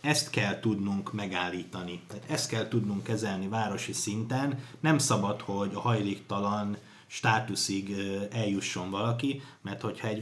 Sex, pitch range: male, 100-125 Hz